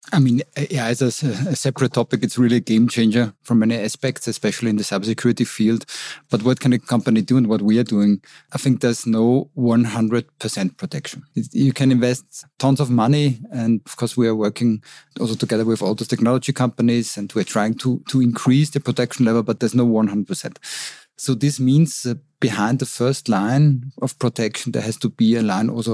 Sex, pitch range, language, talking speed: male, 115-130 Hz, German, 200 wpm